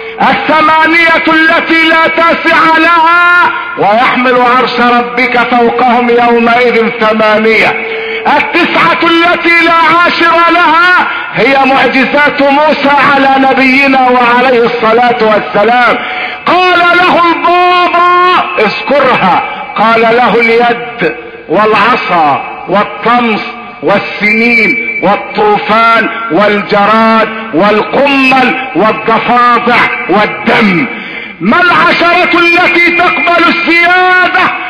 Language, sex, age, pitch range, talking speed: Arabic, male, 50-69, 230-340 Hz, 75 wpm